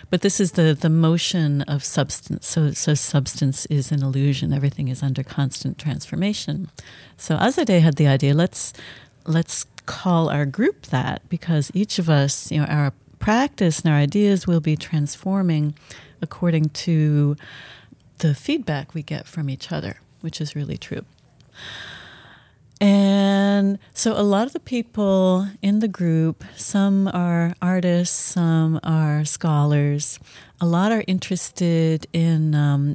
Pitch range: 145-175 Hz